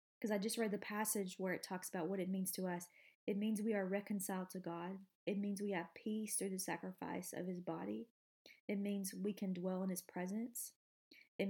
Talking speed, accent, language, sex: 220 wpm, American, English, female